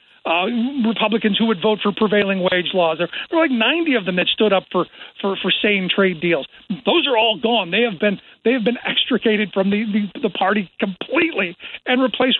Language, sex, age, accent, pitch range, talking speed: English, male, 50-69, American, 195-240 Hz, 210 wpm